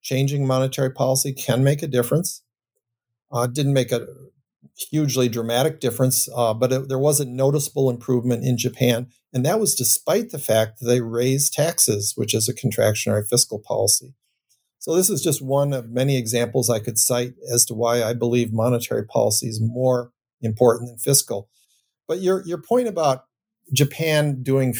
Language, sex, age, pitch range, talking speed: English, male, 50-69, 115-135 Hz, 170 wpm